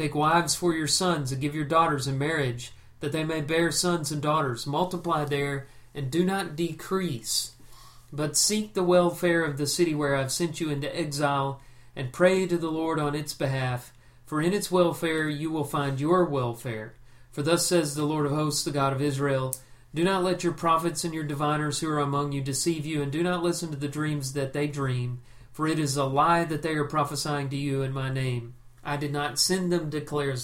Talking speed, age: 215 wpm, 40-59